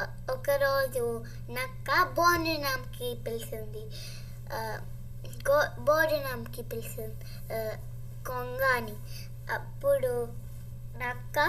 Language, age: Telugu, 20-39